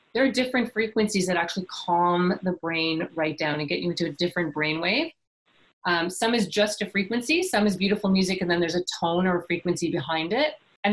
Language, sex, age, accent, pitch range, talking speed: English, female, 30-49, American, 175-220 Hz, 215 wpm